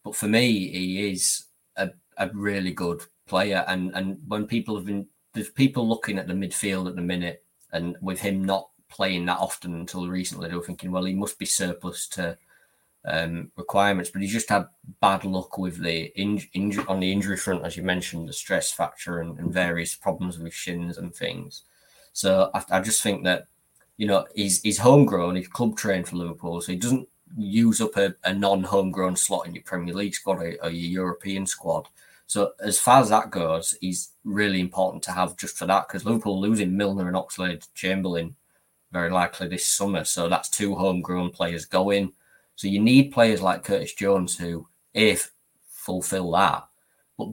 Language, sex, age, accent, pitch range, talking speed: English, male, 20-39, British, 90-105 Hz, 190 wpm